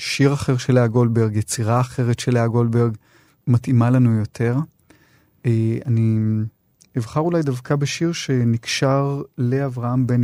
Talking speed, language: 125 wpm, Hebrew